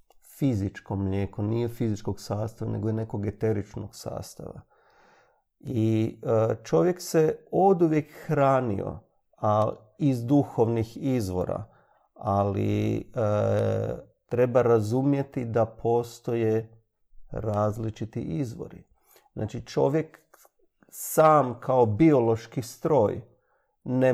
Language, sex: Croatian, male